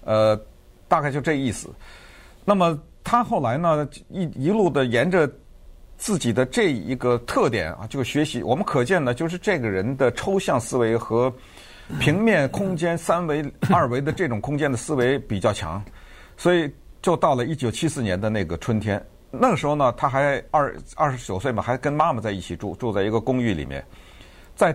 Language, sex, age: Chinese, male, 50-69